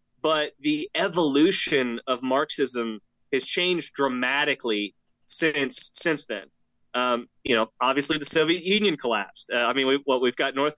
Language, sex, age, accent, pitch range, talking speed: English, male, 30-49, American, 130-160 Hz, 150 wpm